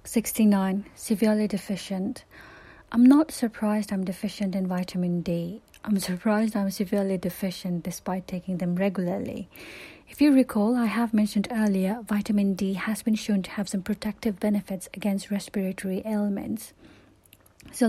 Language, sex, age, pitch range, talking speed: English, female, 30-49, 190-220 Hz, 140 wpm